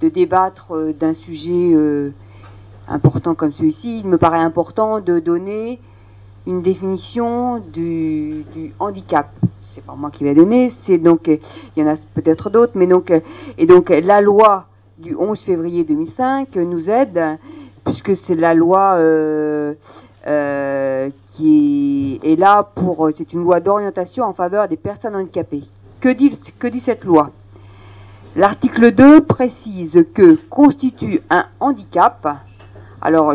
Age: 40-59